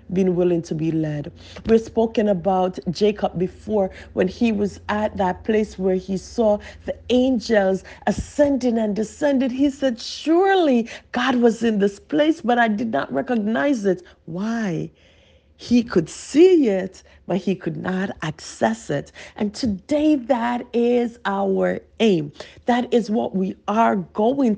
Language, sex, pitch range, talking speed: English, female, 170-250 Hz, 150 wpm